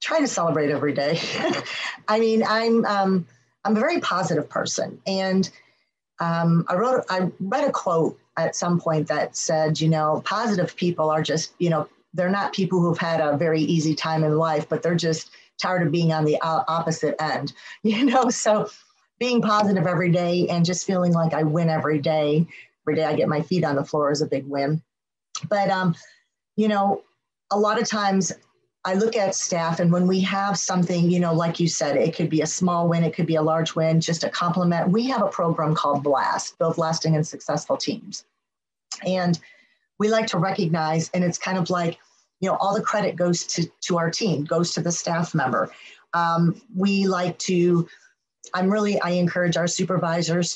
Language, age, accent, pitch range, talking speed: English, 40-59, American, 160-190 Hz, 200 wpm